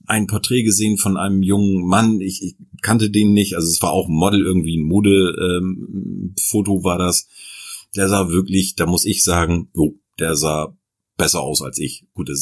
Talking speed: 200 wpm